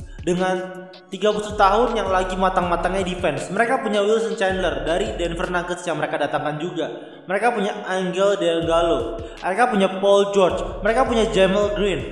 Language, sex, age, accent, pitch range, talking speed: Indonesian, male, 20-39, native, 170-210 Hz, 150 wpm